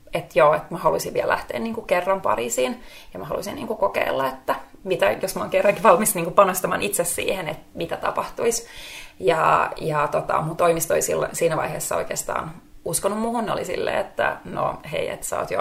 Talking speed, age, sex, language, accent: 185 wpm, 30-49, female, Finnish, native